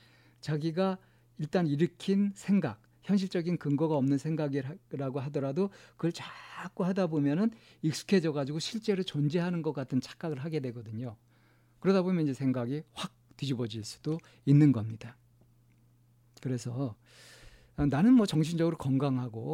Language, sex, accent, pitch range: Korean, male, native, 120-150 Hz